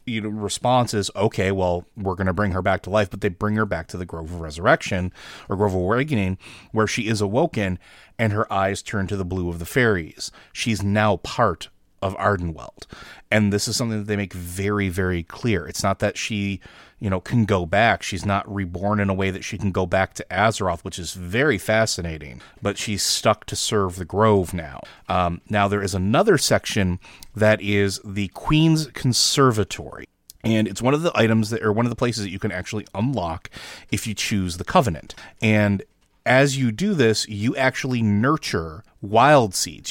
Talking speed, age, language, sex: 200 wpm, 30-49, English, male